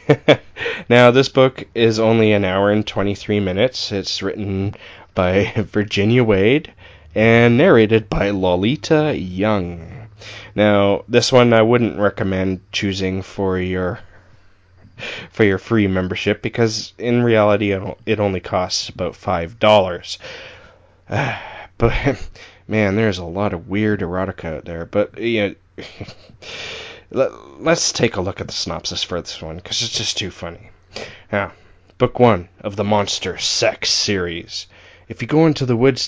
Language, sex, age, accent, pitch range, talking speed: English, male, 20-39, American, 95-120 Hz, 140 wpm